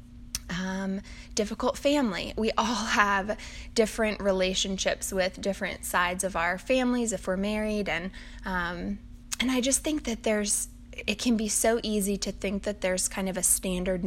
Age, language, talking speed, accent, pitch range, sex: 10-29, English, 160 wpm, American, 185-220 Hz, female